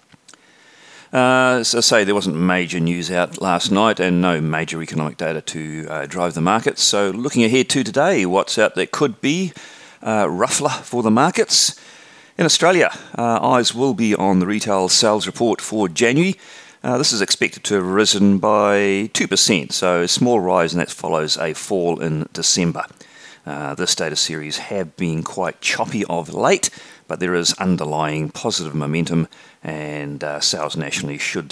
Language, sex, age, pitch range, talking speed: English, male, 40-59, 80-115 Hz, 170 wpm